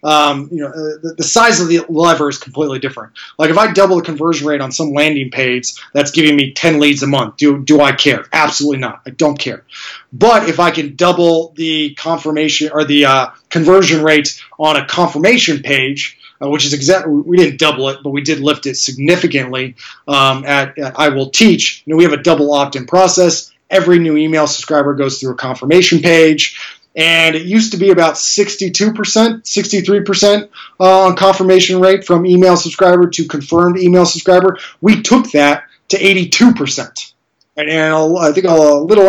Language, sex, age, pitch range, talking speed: English, male, 20-39, 145-180 Hz, 185 wpm